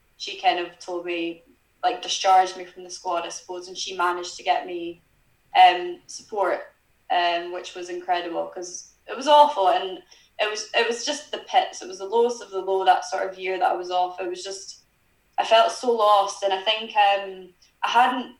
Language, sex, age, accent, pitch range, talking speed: English, female, 10-29, British, 190-245 Hz, 210 wpm